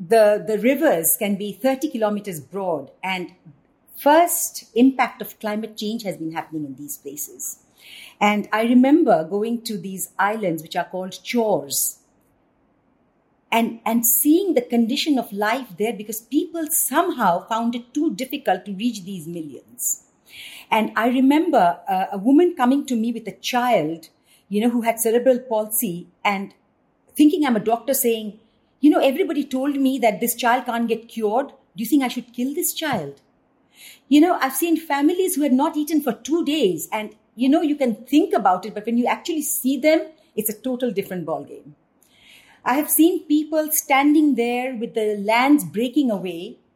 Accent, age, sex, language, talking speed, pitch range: Indian, 50-69, female, English, 175 wpm, 205-275 Hz